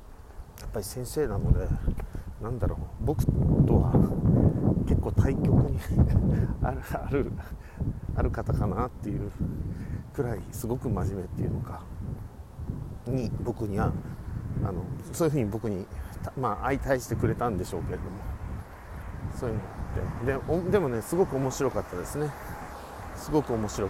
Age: 50-69